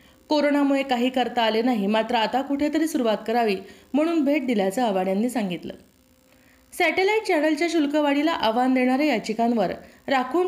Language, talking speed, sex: Marathi, 130 wpm, female